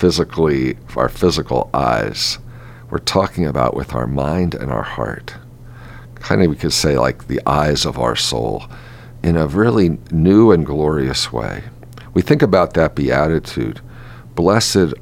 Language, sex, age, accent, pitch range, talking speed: English, male, 50-69, American, 75-120 Hz, 150 wpm